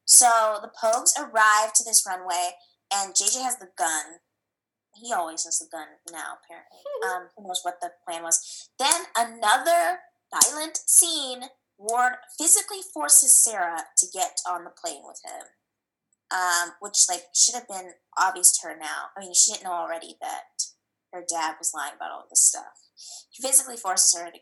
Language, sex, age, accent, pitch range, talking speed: English, female, 20-39, American, 190-305 Hz, 175 wpm